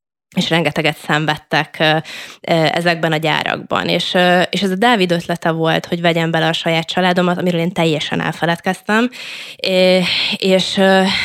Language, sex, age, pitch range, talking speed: Hungarian, female, 20-39, 160-180 Hz, 125 wpm